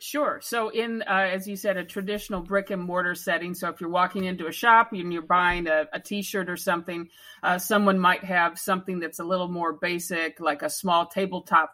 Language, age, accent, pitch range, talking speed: English, 50-69, American, 155-180 Hz, 215 wpm